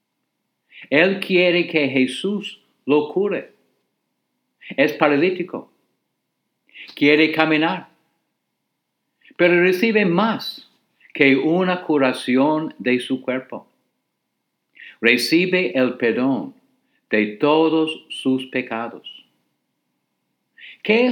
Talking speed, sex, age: 75 wpm, male, 60-79